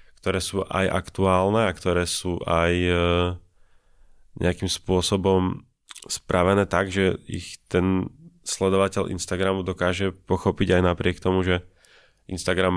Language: Slovak